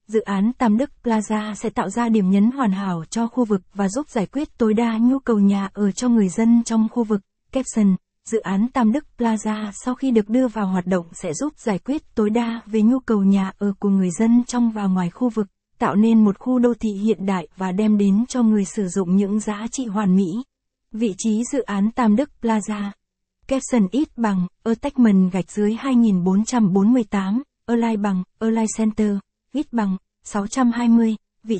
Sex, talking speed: female, 200 wpm